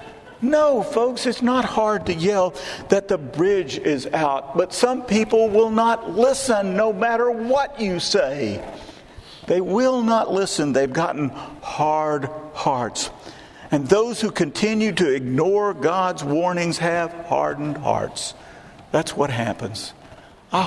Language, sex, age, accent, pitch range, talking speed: English, male, 50-69, American, 130-215 Hz, 135 wpm